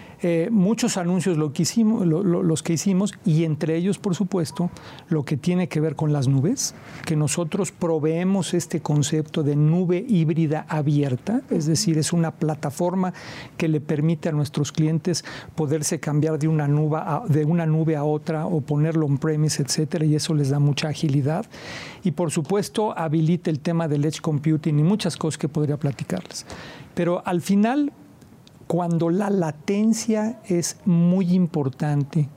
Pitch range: 150-175 Hz